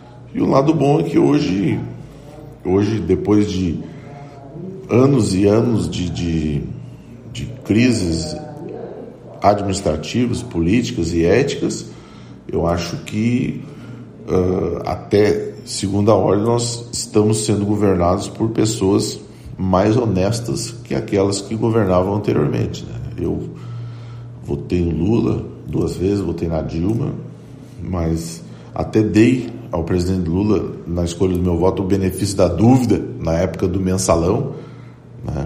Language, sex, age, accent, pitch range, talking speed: Portuguese, male, 40-59, Brazilian, 90-120 Hz, 115 wpm